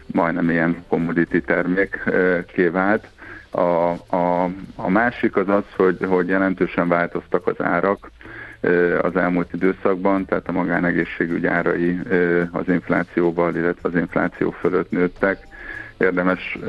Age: 50-69